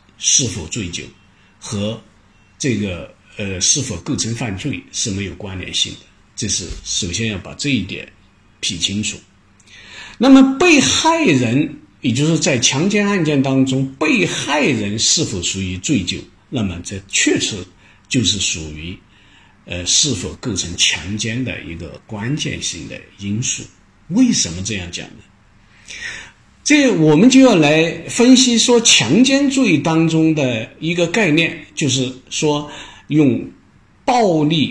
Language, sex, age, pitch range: Chinese, male, 50-69, 95-155 Hz